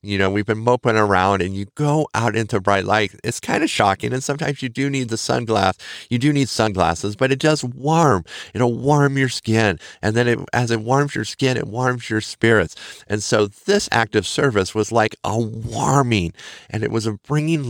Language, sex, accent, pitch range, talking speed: English, male, American, 105-135 Hz, 215 wpm